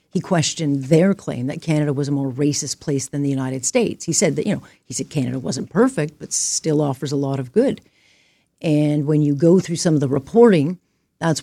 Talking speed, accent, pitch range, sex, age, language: 220 wpm, American, 140-170 Hz, female, 50-69, English